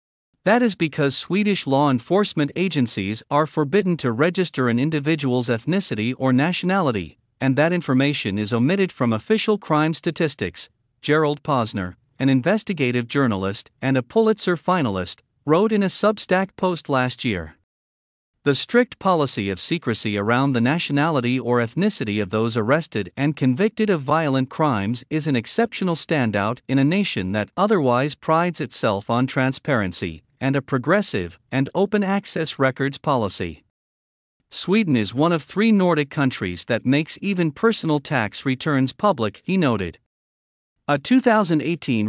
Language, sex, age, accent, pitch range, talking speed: English, male, 50-69, American, 120-170 Hz, 140 wpm